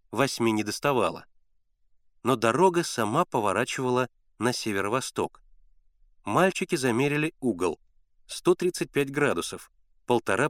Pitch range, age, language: 105-155 Hz, 30-49, Russian